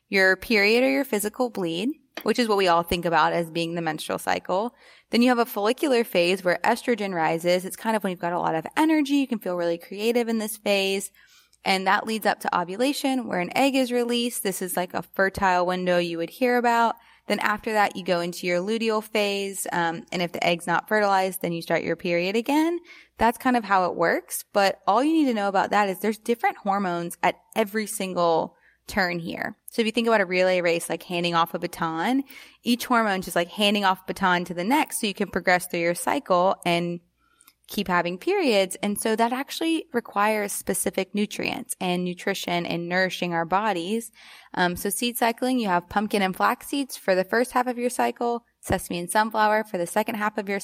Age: 20-39